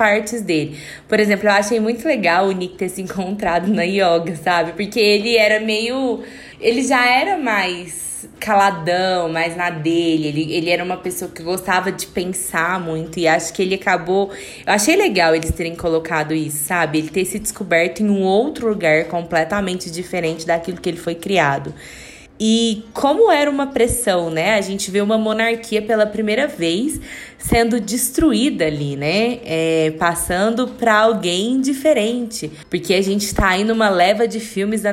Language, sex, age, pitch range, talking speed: Portuguese, female, 20-39, 170-220 Hz, 170 wpm